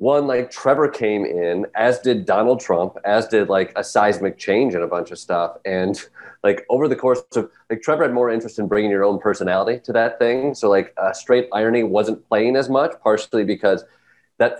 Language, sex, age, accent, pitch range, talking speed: English, male, 30-49, American, 105-125 Hz, 205 wpm